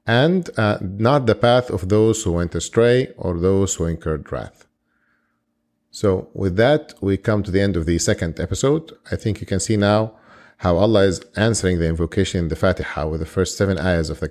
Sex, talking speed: male, 205 wpm